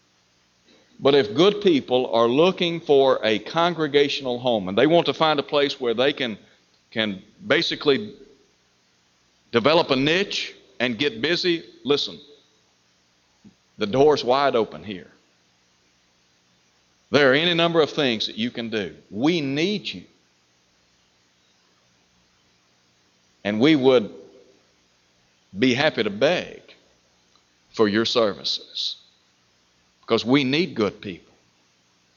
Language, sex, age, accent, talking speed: English, male, 60-79, American, 115 wpm